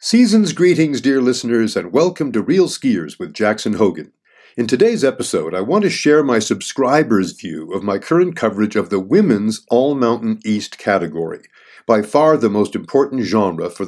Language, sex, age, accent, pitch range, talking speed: English, male, 50-69, American, 95-135 Hz, 175 wpm